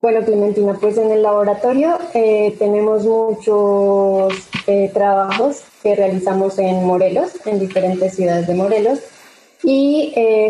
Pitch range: 195-235 Hz